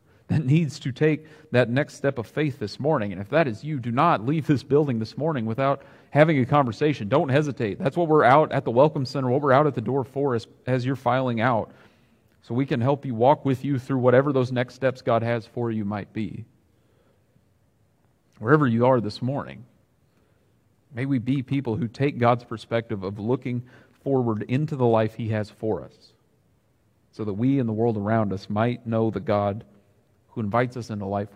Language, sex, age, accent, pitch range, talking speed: English, male, 40-59, American, 105-130 Hz, 205 wpm